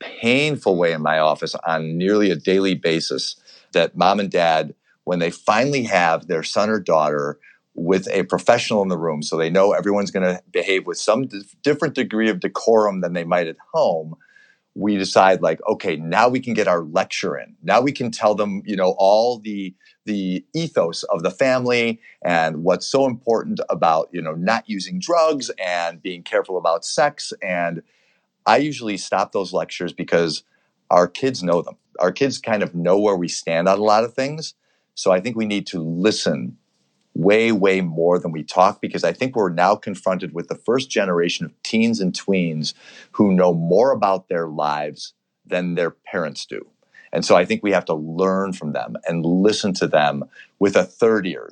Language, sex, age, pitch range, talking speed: English, male, 40-59, 85-110 Hz, 190 wpm